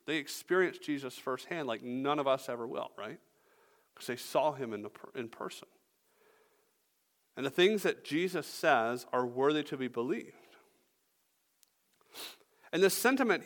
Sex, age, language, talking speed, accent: male, 40-59, English, 150 wpm, American